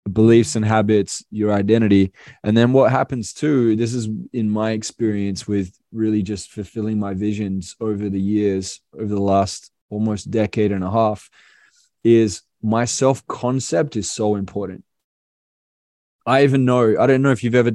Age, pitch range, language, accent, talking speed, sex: 20-39, 105-120 Hz, English, Australian, 160 wpm, male